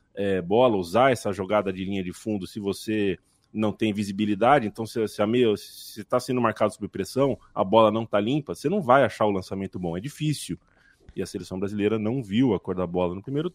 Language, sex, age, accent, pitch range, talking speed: Portuguese, male, 20-39, Brazilian, 95-120 Hz, 205 wpm